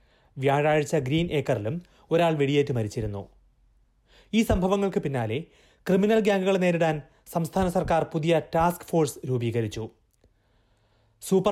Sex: male